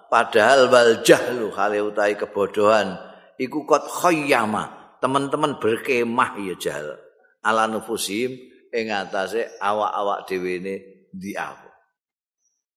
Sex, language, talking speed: male, Indonesian, 105 wpm